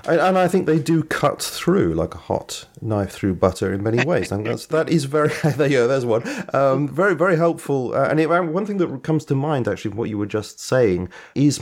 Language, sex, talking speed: English, male, 225 wpm